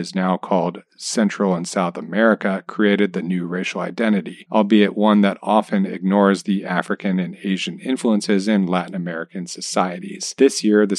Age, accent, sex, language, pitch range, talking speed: 40-59, American, male, English, 90-110 Hz, 160 wpm